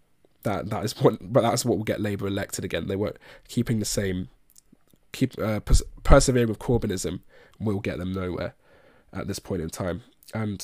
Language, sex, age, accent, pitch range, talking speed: English, male, 20-39, British, 95-110 Hz, 185 wpm